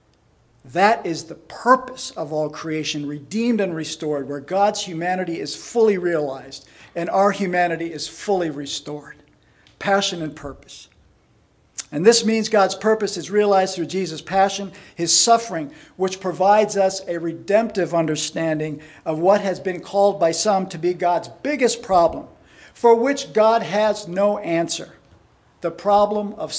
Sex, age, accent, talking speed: male, 50-69, American, 145 wpm